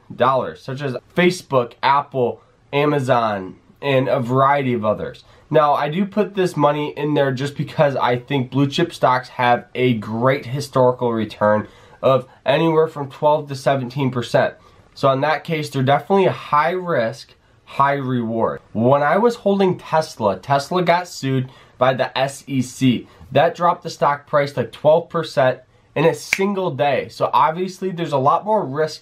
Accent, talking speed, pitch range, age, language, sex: American, 165 wpm, 120-155 Hz, 20-39, English, male